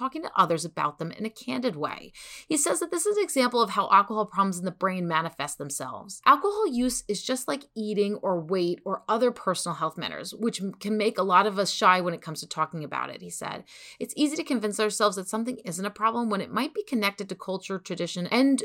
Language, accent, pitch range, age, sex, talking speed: English, American, 175-235 Hz, 30-49, female, 240 wpm